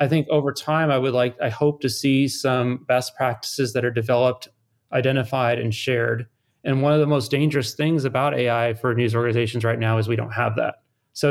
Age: 30-49